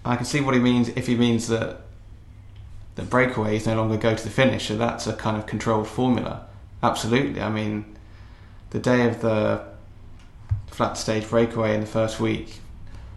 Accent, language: British, English